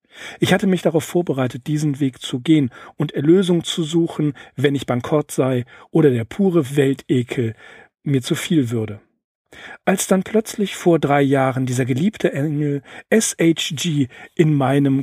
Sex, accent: male, German